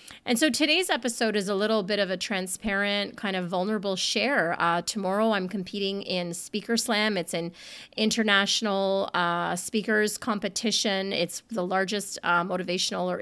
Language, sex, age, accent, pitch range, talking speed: English, female, 30-49, American, 185-230 Hz, 155 wpm